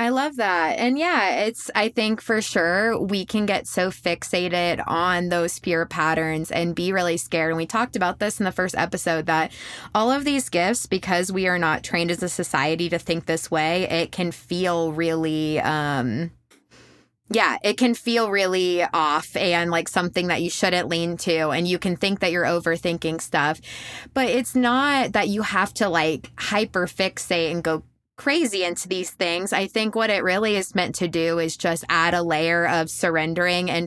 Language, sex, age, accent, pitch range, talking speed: English, female, 20-39, American, 165-200 Hz, 195 wpm